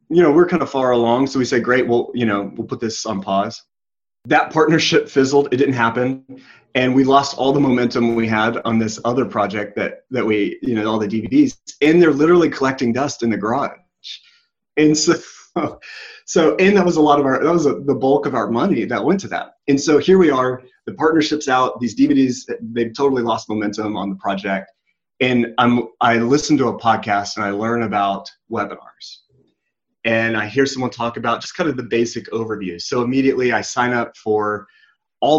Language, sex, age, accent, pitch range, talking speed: English, male, 30-49, American, 110-140 Hz, 205 wpm